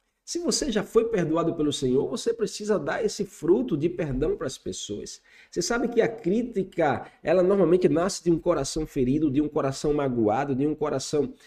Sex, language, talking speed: male, Portuguese, 190 wpm